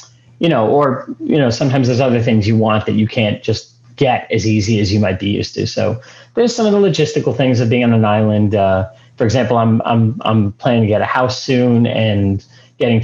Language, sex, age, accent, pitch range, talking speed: English, male, 30-49, American, 110-135 Hz, 230 wpm